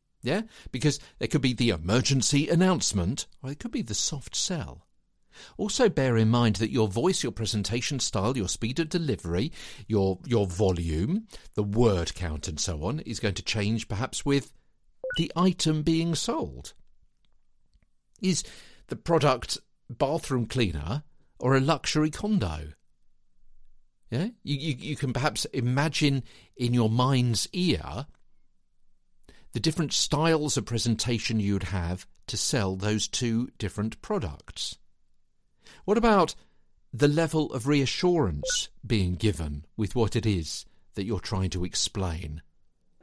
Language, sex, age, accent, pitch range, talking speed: English, male, 50-69, British, 100-145 Hz, 135 wpm